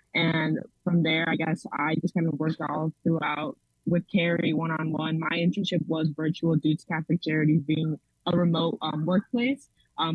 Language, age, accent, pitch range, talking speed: English, 20-39, American, 155-180 Hz, 170 wpm